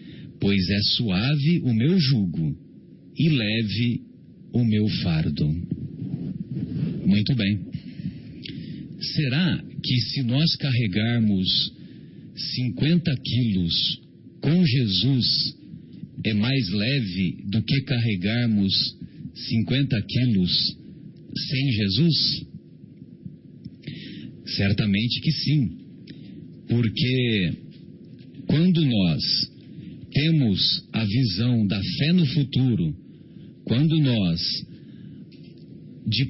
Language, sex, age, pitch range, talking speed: Portuguese, male, 50-69, 110-140 Hz, 80 wpm